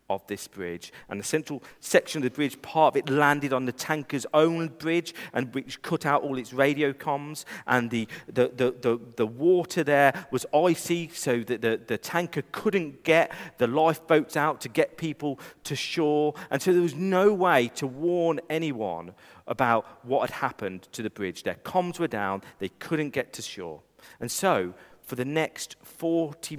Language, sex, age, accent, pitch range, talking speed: English, male, 40-59, British, 110-165 Hz, 185 wpm